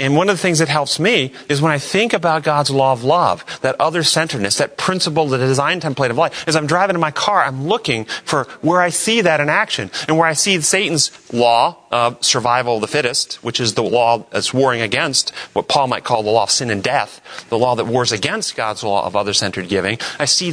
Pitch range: 130-180 Hz